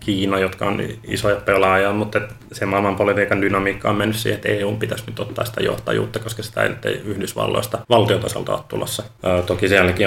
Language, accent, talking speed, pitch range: Finnish, native, 165 wpm, 100-110 Hz